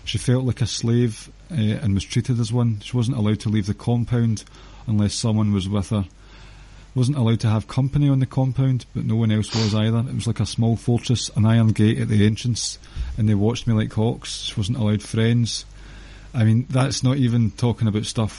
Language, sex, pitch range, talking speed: English, male, 105-120 Hz, 215 wpm